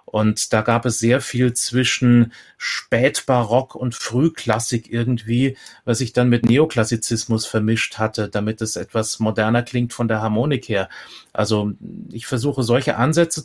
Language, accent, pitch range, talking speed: German, German, 110-130 Hz, 145 wpm